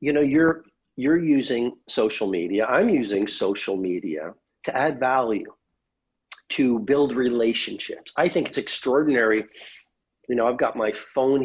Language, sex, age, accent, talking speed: English, male, 50-69, American, 140 wpm